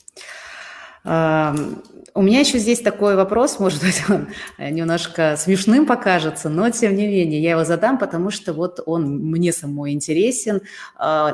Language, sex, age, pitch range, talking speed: Russian, female, 30-49, 150-190 Hz, 140 wpm